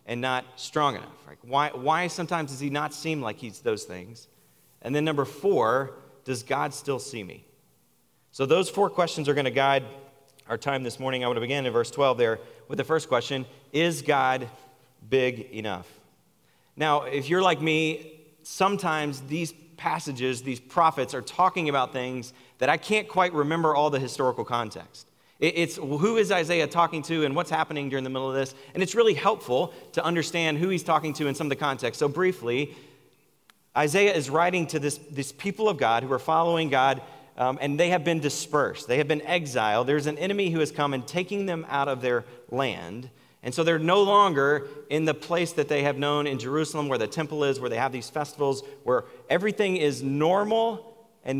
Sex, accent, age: male, American, 30-49